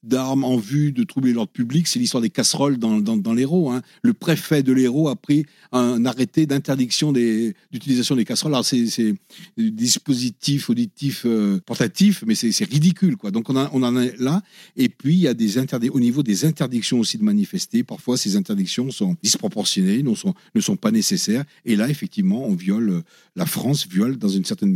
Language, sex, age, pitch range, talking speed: French, male, 60-79, 135-195 Hz, 205 wpm